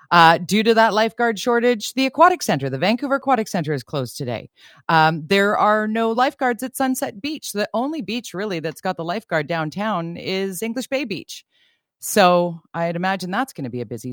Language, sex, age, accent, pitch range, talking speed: English, female, 40-59, American, 165-240 Hz, 195 wpm